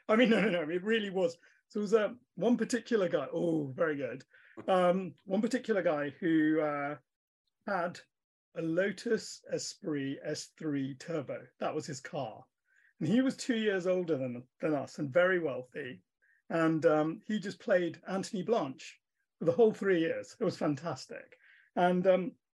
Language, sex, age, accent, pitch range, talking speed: English, male, 40-59, British, 155-205 Hz, 165 wpm